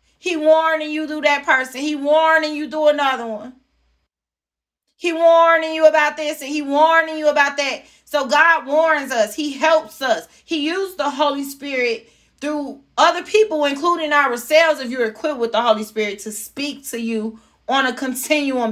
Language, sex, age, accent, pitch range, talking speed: English, female, 30-49, American, 215-295 Hz, 175 wpm